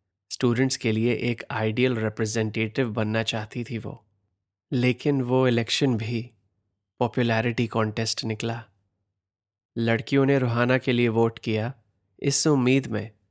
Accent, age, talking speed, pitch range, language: native, 20-39, 120 wpm, 105-125 Hz, Hindi